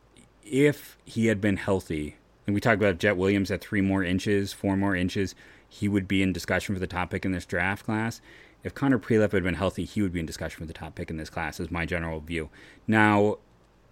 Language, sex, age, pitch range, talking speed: English, male, 30-49, 90-105 Hz, 235 wpm